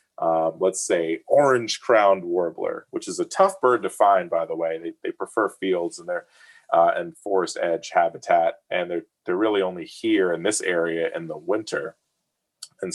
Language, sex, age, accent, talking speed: English, male, 30-49, American, 185 wpm